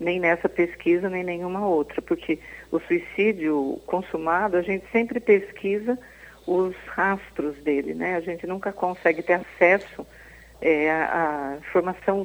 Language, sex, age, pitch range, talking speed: Portuguese, female, 50-69, 165-200 Hz, 125 wpm